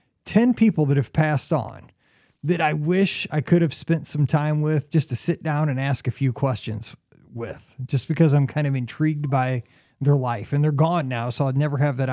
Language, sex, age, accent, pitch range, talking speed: English, male, 30-49, American, 130-170 Hz, 220 wpm